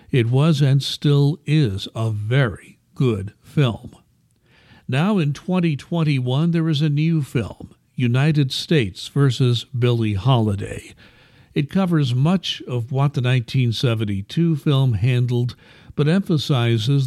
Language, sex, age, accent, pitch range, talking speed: English, male, 60-79, American, 115-145 Hz, 130 wpm